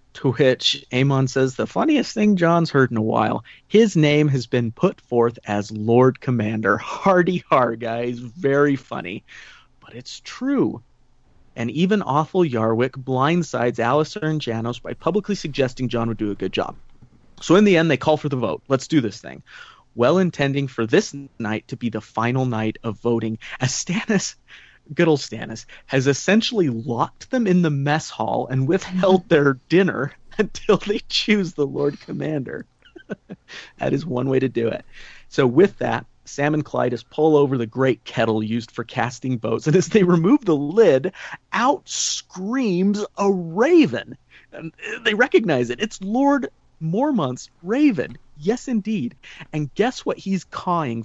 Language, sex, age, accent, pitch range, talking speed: English, male, 30-49, American, 120-185 Hz, 165 wpm